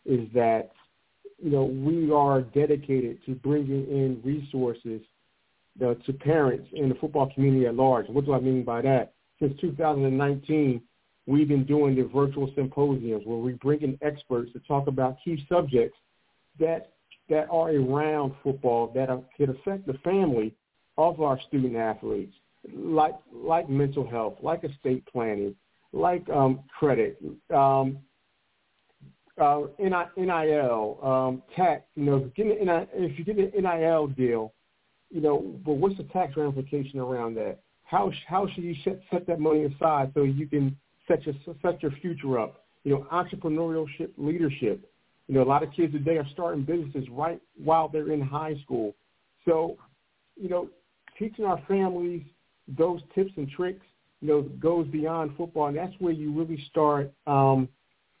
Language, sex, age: English, male, 50-69